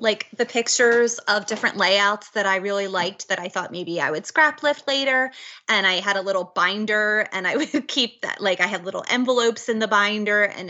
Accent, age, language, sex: American, 20-39, English, female